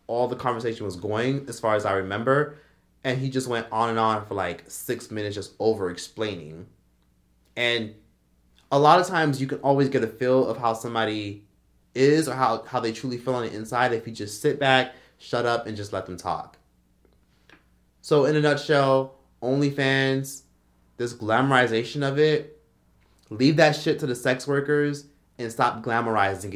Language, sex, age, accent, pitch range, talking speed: English, male, 20-39, American, 105-130 Hz, 180 wpm